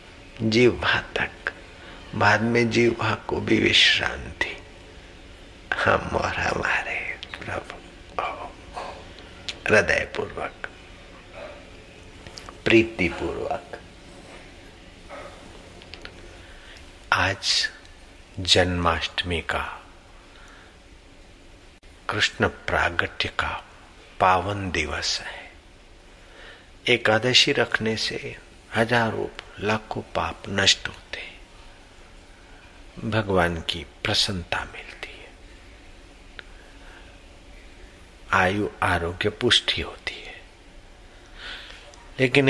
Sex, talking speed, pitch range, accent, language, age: male, 55 wpm, 90-110 Hz, native, Hindi, 60-79